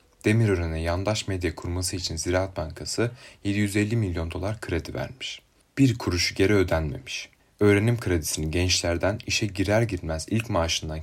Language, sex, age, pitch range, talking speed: Turkish, male, 30-49, 85-105 Hz, 130 wpm